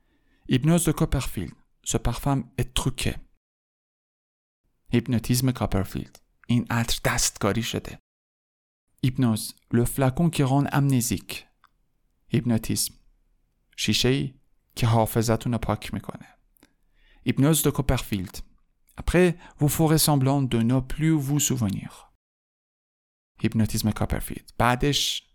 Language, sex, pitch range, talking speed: Persian, male, 105-135 Hz, 95 wpm